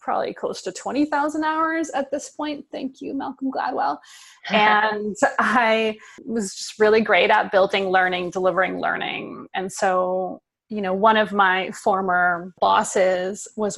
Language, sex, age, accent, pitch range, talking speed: English, female, 20-39, American, 195-300 Hz, 145 wpm